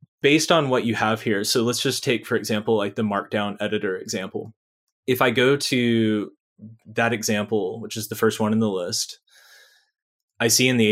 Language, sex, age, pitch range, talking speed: English, male, 20-39, 110-135 Hz, 190 wpm